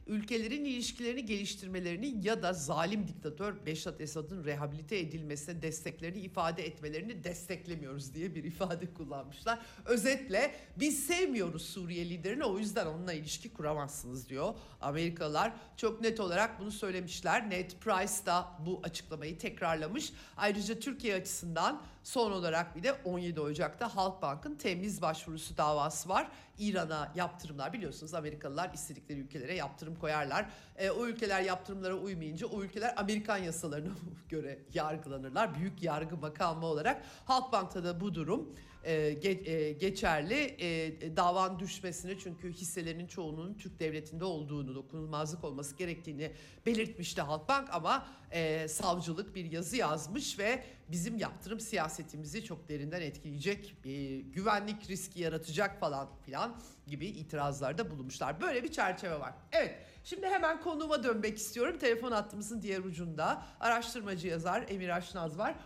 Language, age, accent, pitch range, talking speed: Turkish, 60-79, native, 155-205 Hz, 130 wpm